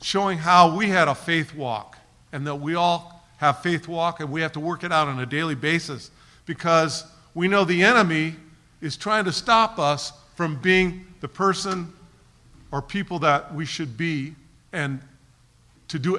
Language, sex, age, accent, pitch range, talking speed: English, male, 50-69, American, 140-180 Hz, 180 wpm